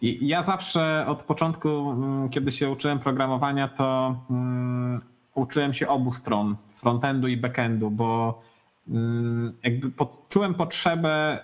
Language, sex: Polish, male